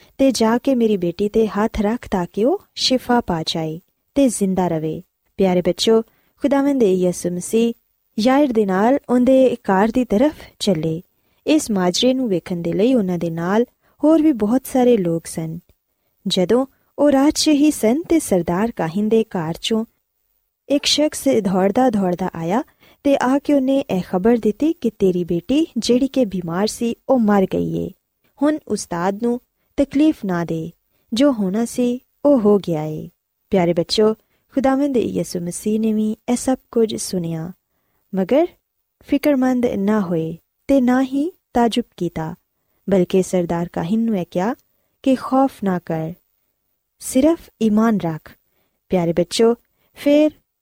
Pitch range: 180-255 Hz